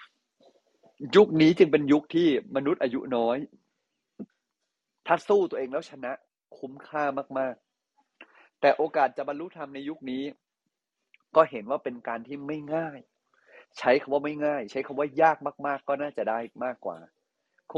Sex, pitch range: male, 125-155 Hz